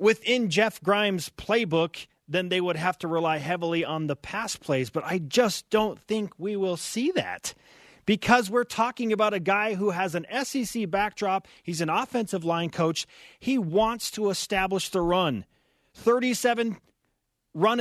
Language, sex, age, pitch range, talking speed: English, male, 30-49, 165-225 Hz, 160 wpm